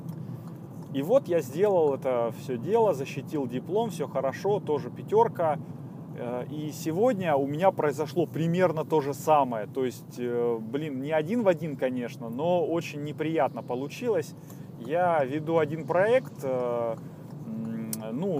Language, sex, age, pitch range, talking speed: Russian, male, 30-49, 135-160 Hz, 125 wpm